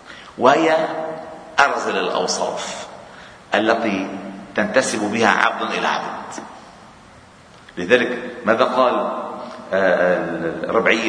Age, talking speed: 50-69, 70 wpm